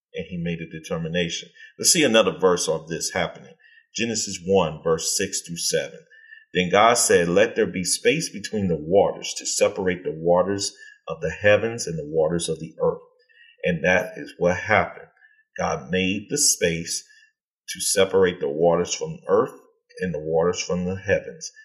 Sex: male